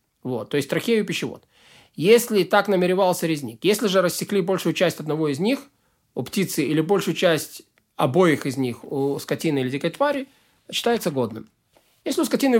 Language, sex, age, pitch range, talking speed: Russian, male, 20-39, 155-205 Hz, 170 wpm